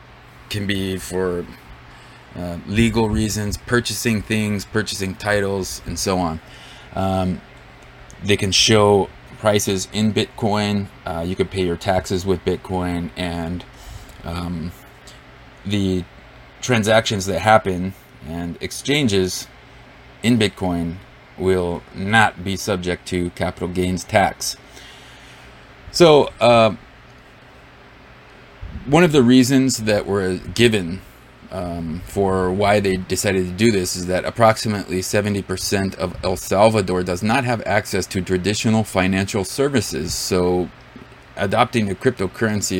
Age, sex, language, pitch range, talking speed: 30-49, male, English, 90-110 Hz, 115 wpm